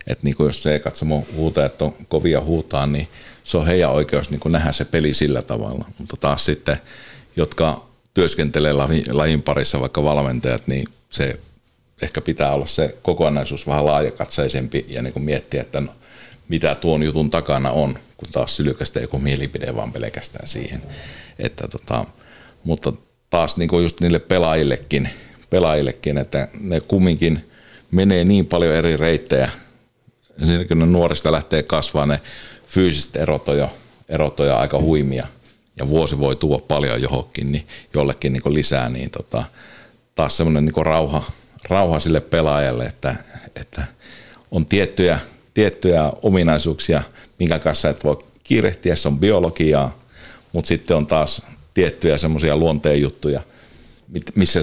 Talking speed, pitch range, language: 135 wpm, 70-80 Hz, Finnish